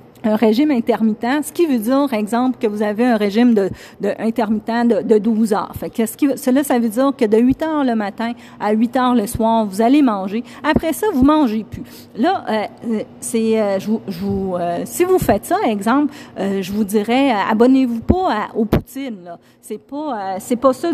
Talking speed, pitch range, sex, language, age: 225 wpm, 210-275 Hz, female, French, 40-59